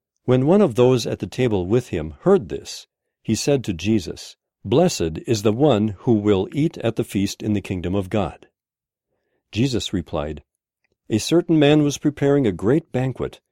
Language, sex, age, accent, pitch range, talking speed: English, male, 50-69, American, 100-140 Hz, 180 wpm